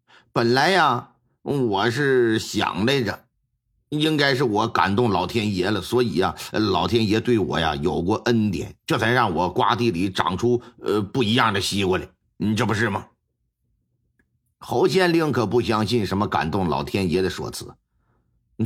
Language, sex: Chinese, male